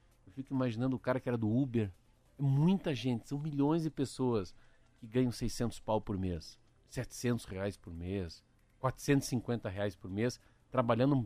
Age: 50-69